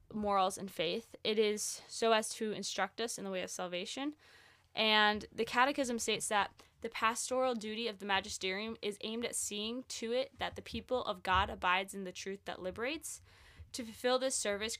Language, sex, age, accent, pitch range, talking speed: English, female, 10-29, American, 190-230 Hz, 190 wpm